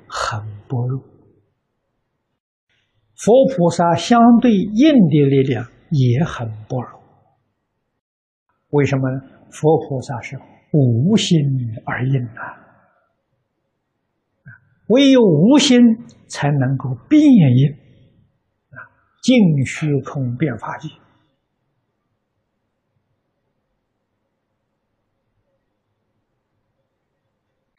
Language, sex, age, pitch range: Chinese, male, 60-79, 115-160 Hz